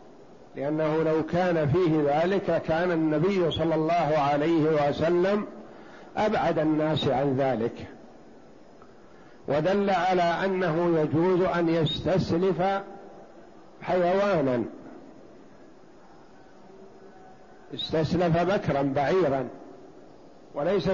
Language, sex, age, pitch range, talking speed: Arabic, male, 60-79, 160-190 Hz, 75 wpm